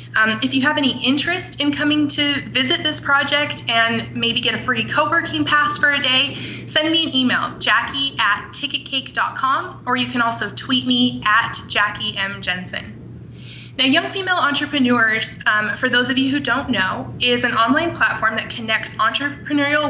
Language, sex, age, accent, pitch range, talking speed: English, female, 20-39, American, 230-285 Hz, 175 wpm